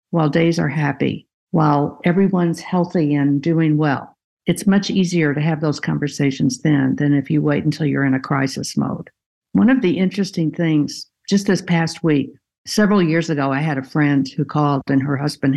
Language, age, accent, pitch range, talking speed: English, 60-79, American, 145-175 Hz, 190 wpm